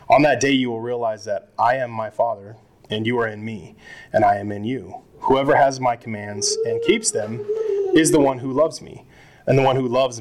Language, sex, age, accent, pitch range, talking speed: English, male, 20-39, American, 110-135 Hz, 230 wpm